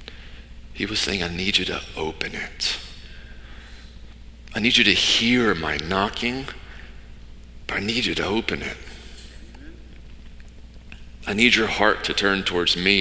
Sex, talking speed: male, 145 wpm